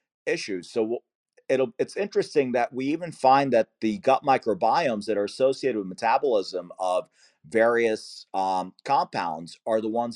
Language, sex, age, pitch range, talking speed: English, male, 40-59, 110-145 Hz, 150 wpm